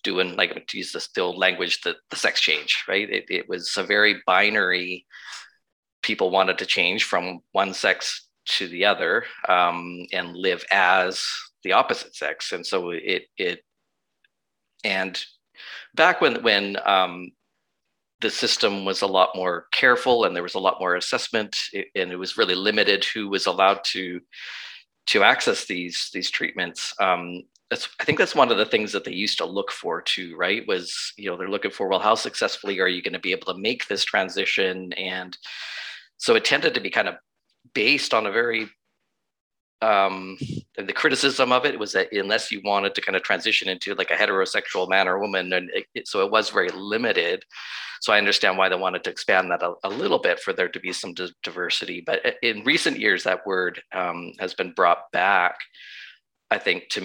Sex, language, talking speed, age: male, English, 185 wpm, 40-59